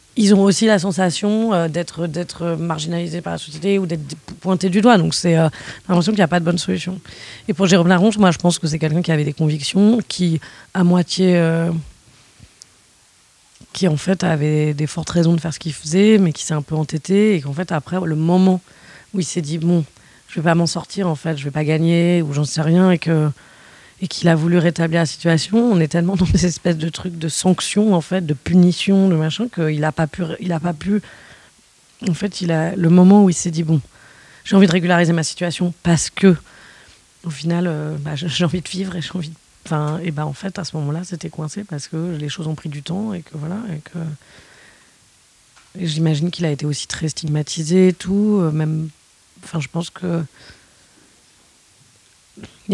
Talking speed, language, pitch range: 220 wpm, French, 155-185 Hz